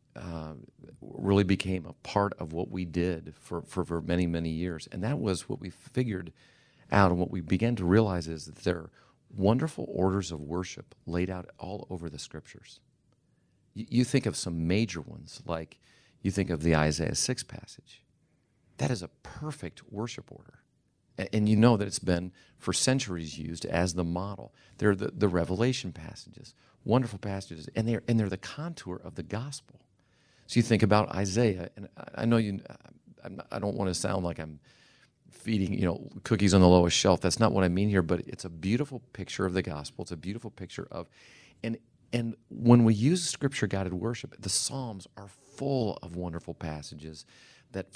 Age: 40-59